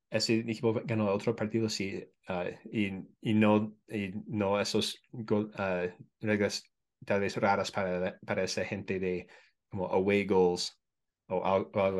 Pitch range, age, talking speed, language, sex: 95-115 Hz, 20-39, 150 wpm, Spanish, male